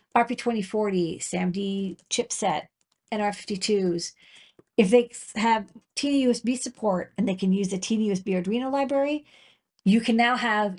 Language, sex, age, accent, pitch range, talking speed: English, female, 40-59, American, 190-235 Hz, 130 wpm